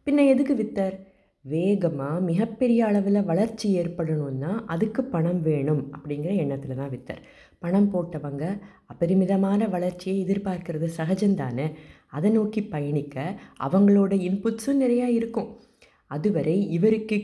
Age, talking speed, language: 20-39, 105 wpm, Tamil